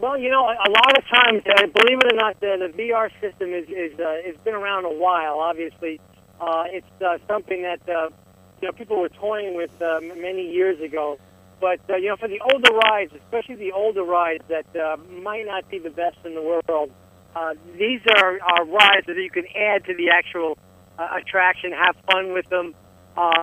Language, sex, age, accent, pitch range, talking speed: English, male, 50-69, American, 170-205 Hz, 210 wpm